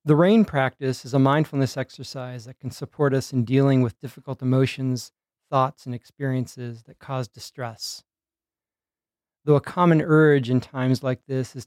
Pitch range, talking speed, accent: 120-140 Hz, 160 wpm, American